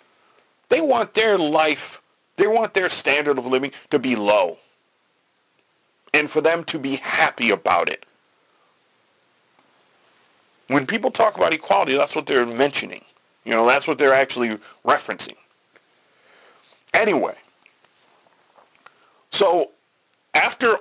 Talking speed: 115 wpm